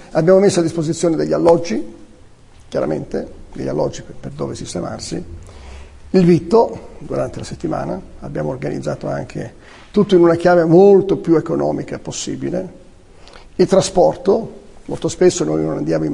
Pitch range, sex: 155-185 Hz, male